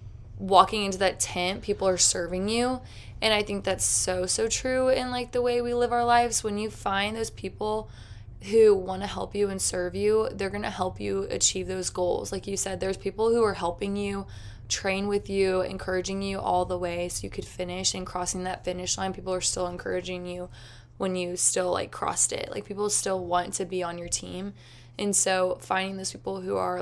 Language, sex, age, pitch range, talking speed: English, female, 20-39, 175-200 Hz, 215 wpm